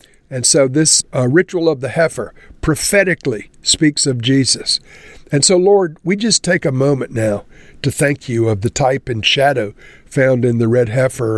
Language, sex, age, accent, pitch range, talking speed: English, male, 60-79, American, 115-150 Hz, 180 wpm